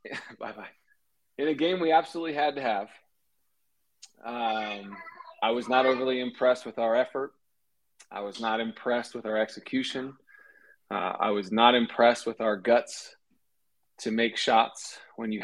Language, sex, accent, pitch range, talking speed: English, male, American, 110-135 Hz, 150 wpm